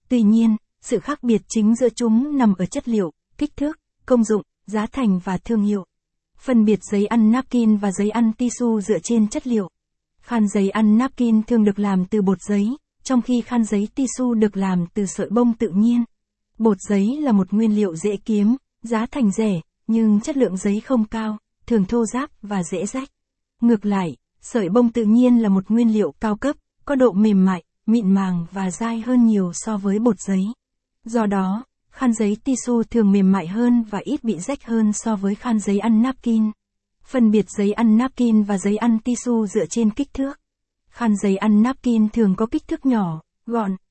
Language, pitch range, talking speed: Vietnamese, 205-240 Hz, 200 wpm